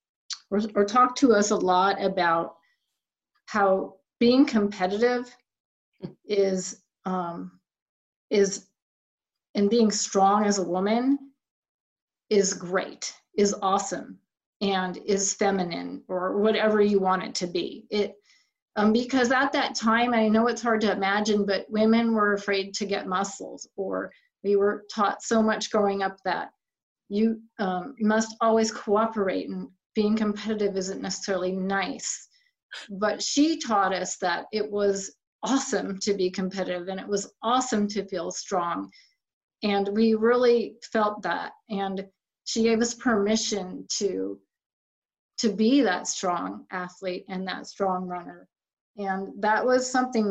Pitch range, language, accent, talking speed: 195-230 Hz, English, American, 135 wpm